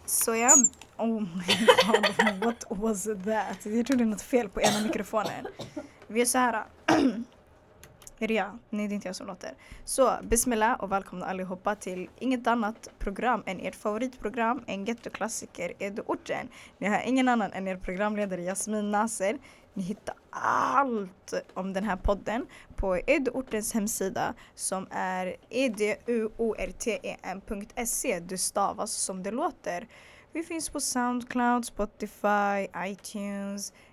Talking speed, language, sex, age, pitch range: 140 wpm, Swedish, female, 20-39, 195-235 Hz